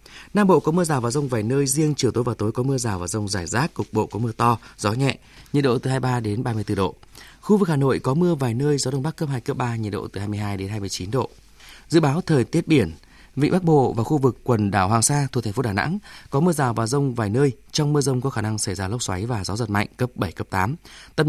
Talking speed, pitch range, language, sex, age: 290 wpm, 105-140 Hz, Vietnamese, male, 20-39